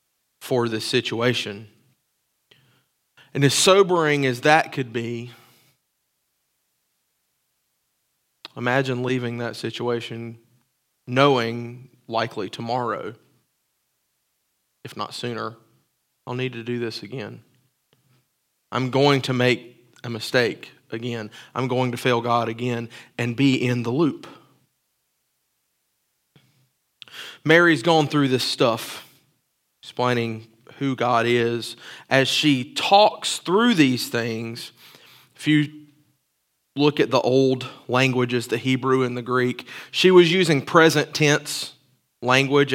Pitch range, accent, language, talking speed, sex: 120-145 Hz, American, English, 110 wpm, male